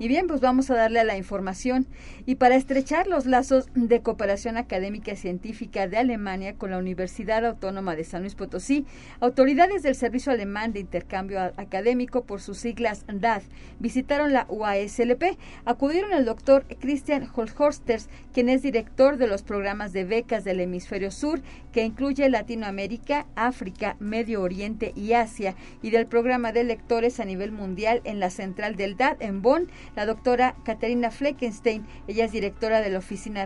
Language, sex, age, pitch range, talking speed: Spanish, female, 40-59, 200-245 Hz, 165 wpm